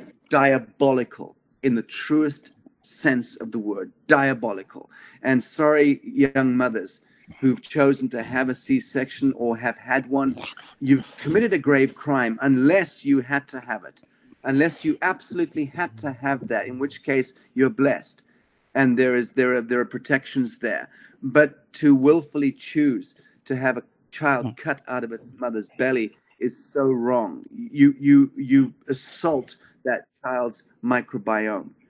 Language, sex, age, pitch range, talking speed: English, male, 40-59, 125-145 Hz, 150 wpm